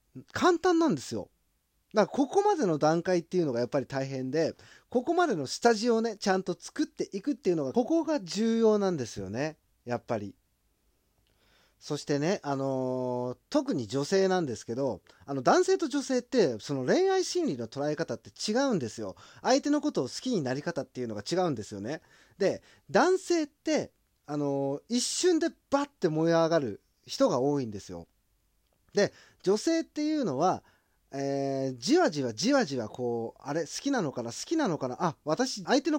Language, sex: Japanese, male